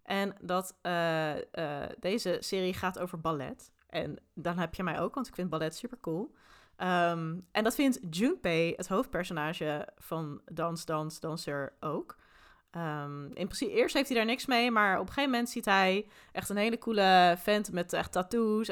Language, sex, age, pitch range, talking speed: Dutch, female, 20-39, 170-200 Hz, 185 wpm